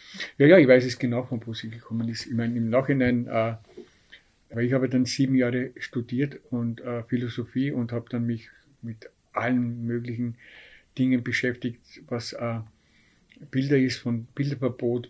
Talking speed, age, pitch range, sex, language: 160 wpm, 50-69, 115-130 Hz, male, German